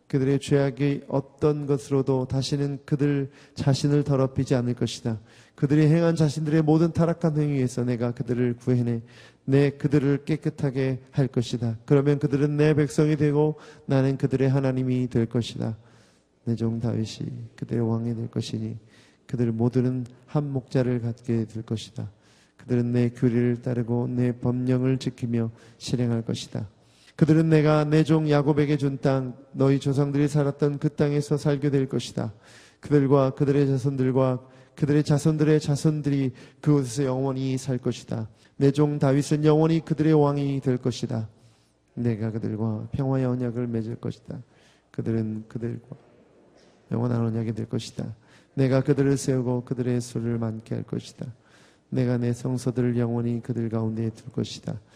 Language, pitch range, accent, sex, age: Korean, 120-145 Hz, native, male, 30-49